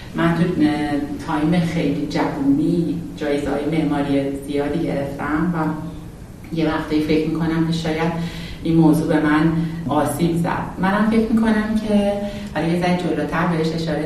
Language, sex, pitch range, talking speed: Persian, female, 150-190 Hz, 135 wpm